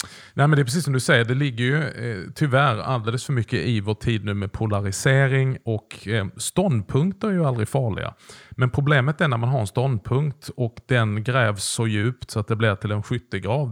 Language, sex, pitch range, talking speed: Swedish, male, 110-135 Hz, 215 wpm